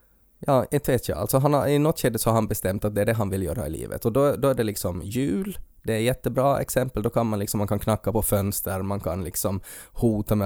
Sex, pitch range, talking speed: male, 105-130 Hz, 280 wpm